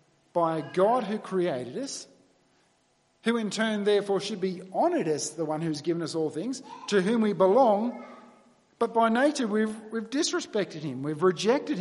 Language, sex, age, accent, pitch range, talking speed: English, male, 50-69, Australian, 175-240 Hz, 175 wpm